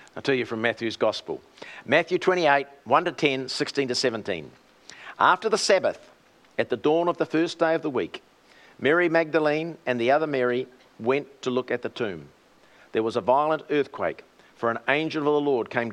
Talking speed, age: 175 wpm, 50-69